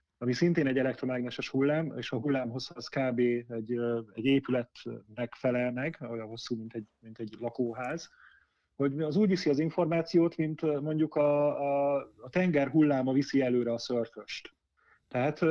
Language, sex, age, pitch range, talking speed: Hungarian, male, 30-49, 125-155 Hz, 150 wpm